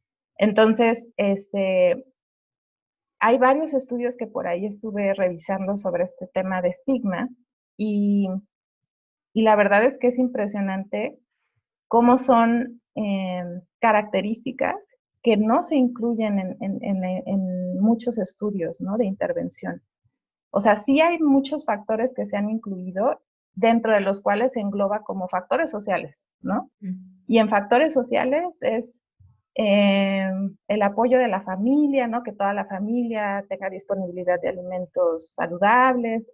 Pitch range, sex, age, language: 195-245 Hz, female, 30-49, Spanish